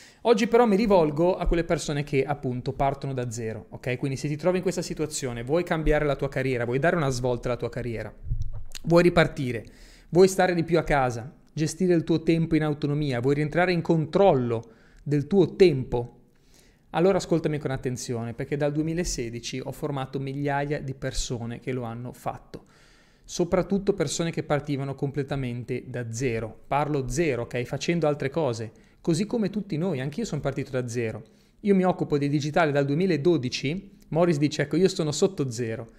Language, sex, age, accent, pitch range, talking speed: Italian, male, 30-49, native, 130-180 Hz, 175 wpm